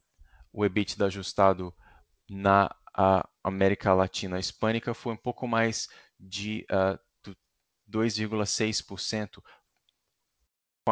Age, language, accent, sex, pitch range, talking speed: 20-39, Portuguese, Brazilian, male, 95-115 Hz, 75 wpm